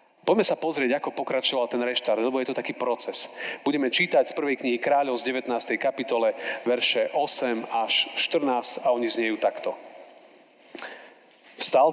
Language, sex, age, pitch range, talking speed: Slovak, male, 40-59, 125-175 Hz, 150 wpm